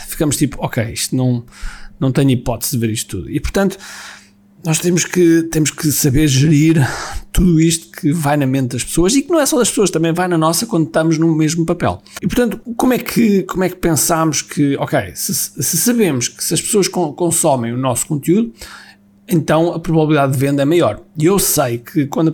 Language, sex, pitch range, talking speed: Portuguese, male, 135-185 Hz, 205 wpm